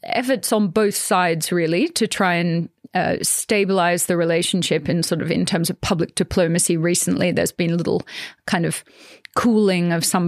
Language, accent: English, Australian